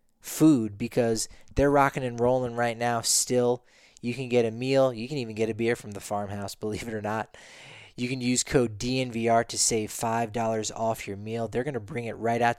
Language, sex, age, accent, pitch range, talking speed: English, male, 20-39, American, 110-120 Hz, 215 wpm